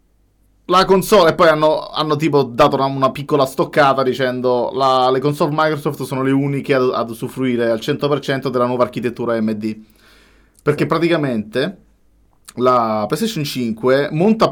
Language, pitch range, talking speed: Italian, 120-150 Hz, 140 wpm